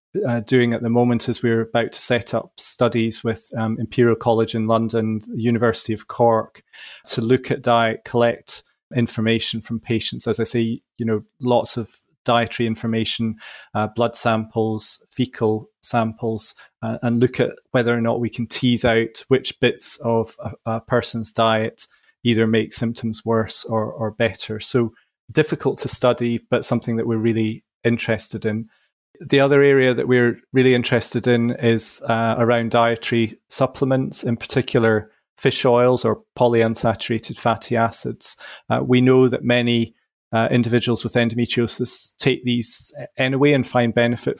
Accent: British